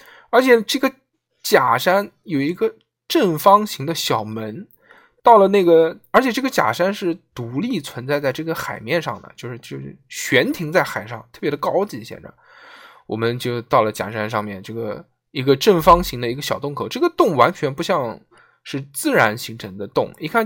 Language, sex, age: Chinese, male, 10-29